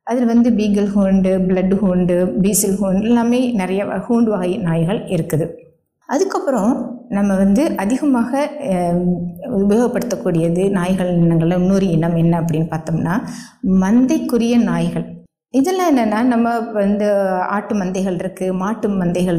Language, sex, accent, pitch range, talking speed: Tamil, female, native, 180-240 Hz, 115 wpm